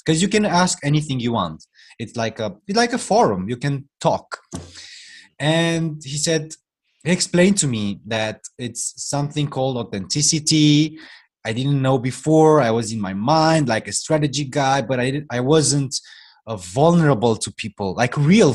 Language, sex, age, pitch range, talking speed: German, male, 20-39, 120-160 Hz, 160 wpm